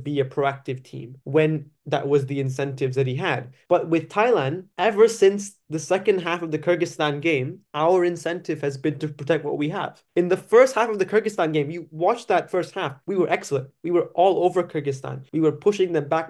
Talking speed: 215 wpm